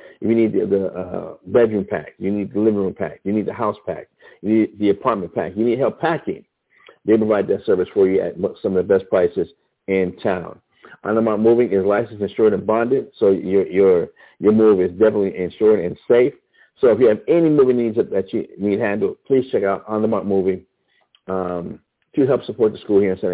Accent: American